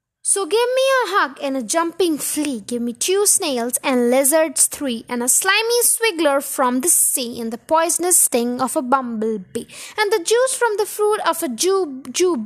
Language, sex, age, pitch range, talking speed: English, female, 20-39, 260-365 Hz, 190 wpm